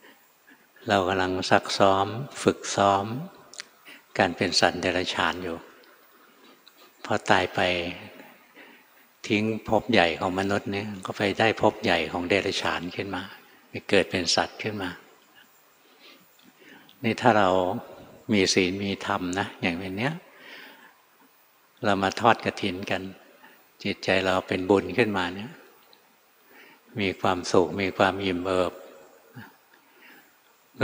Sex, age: male, 60-79